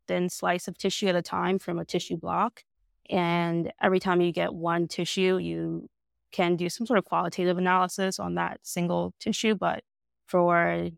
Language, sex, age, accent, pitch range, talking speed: English, female, 20-39, American, 165-185 Hz, 175 wpm